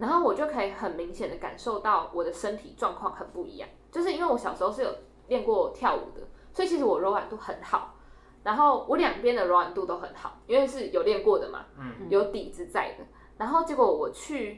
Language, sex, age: Chinese, female, 20-39